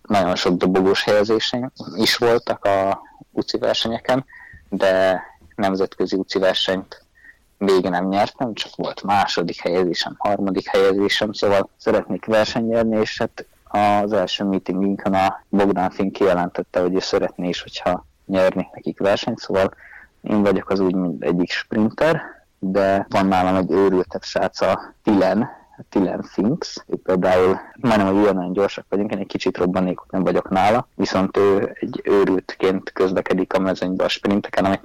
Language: Hungarian